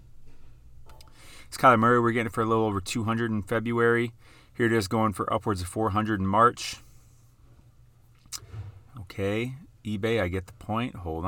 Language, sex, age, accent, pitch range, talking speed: English, male, 30-49, American, 95-115 Hz, 155 wpm